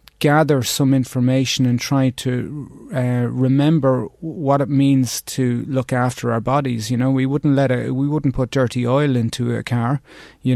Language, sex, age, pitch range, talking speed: English, male, 30-49, 125-140 Hz, 175 wpm